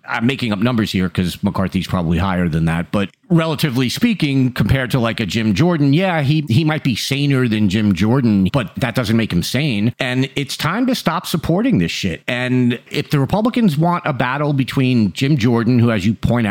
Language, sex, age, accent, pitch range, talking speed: English, male, 50-69, American, 105-150 Hz, 205 wpm